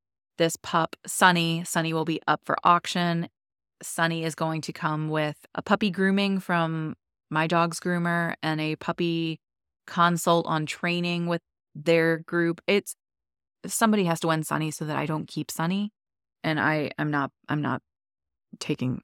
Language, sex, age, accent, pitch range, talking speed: English, female, 20-39, American, 155-175 Hz, 160 wpm